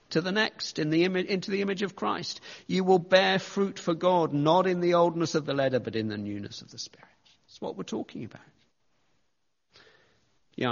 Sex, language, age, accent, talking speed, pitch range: male, English, 40-59, British, 205 wpm, 110-140 Hz